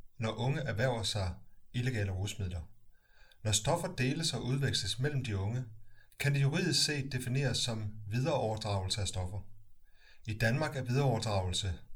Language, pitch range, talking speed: Danish, 105-130 Hz, 135 wpm